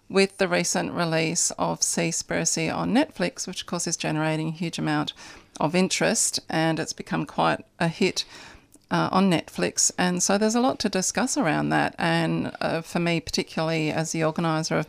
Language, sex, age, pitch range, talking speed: English, female, 40-59, 155-175 Hz, 180 wpm